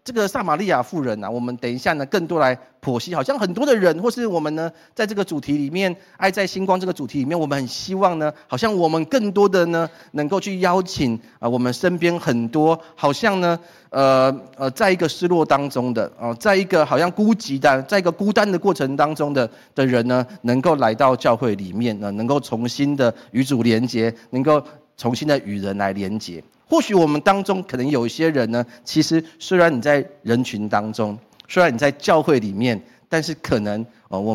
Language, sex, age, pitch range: Chinese, male, 30-49, 125-185 Hz